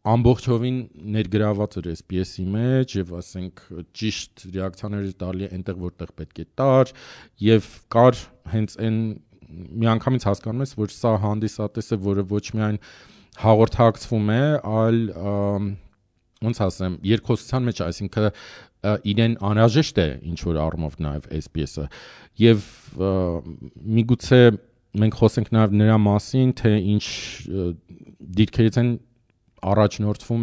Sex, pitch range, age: male, 90-115 Hz, 40-59